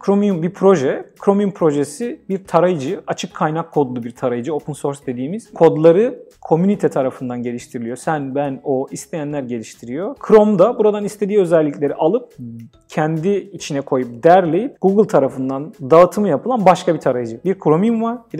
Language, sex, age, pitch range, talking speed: Turkish, male, 40-59, 140-195 Hz, 145 wpm